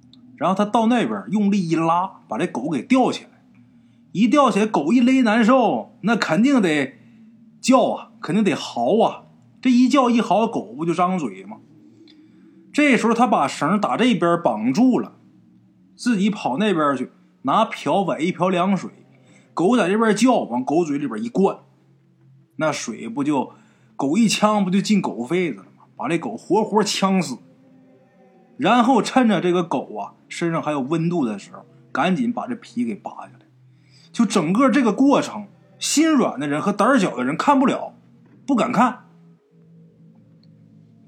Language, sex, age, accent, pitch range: Chinese, male, 20-39, native, 170-245 Hz